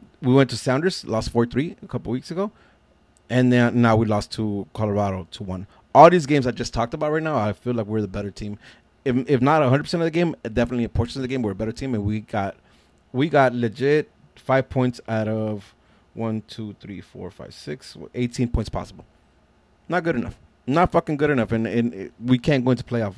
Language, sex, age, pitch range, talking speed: English, male, 30-49, 105-130 Hz, 225 wpm